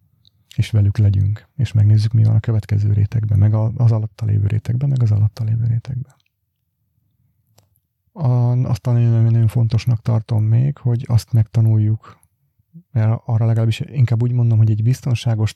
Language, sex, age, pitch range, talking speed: Hungarian, male, 30-49, 105-120 Hz, 145 wpm